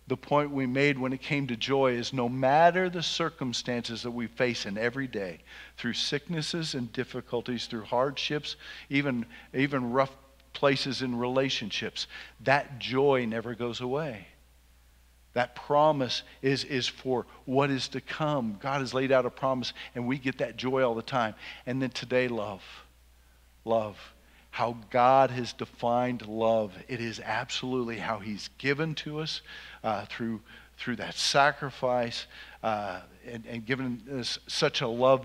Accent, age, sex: American, 50-69, male